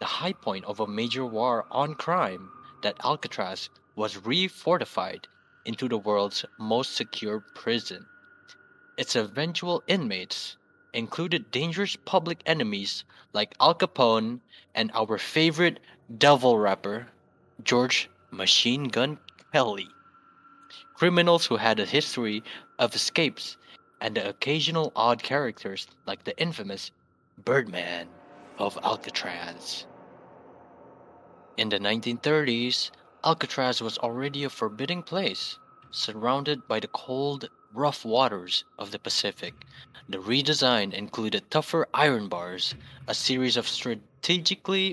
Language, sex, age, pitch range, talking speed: English, male, 20-39, 110-160 Hz, 110 wpm